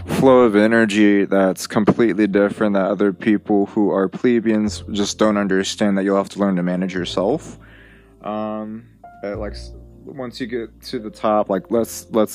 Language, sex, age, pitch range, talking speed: English, male, 20-39, 95-110 Hz, 165 wpm